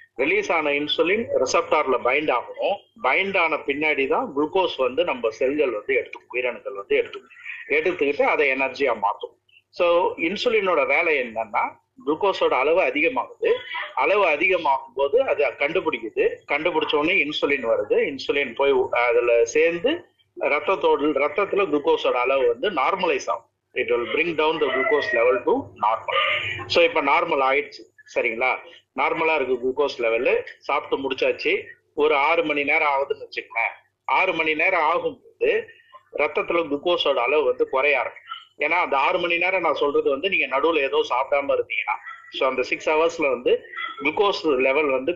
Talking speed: 140 wpm